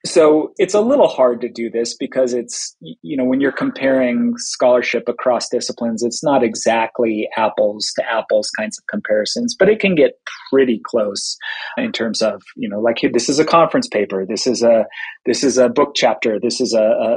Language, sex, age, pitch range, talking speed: English, male, 30-49, 115-155 Hz, 200 wpm